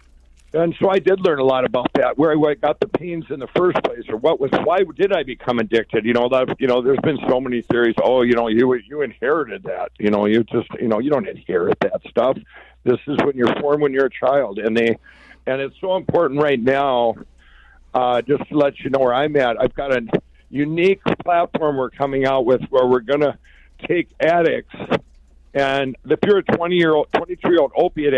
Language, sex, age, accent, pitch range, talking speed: English, male, 60-79, American, 120-155 Hz, 215 wpm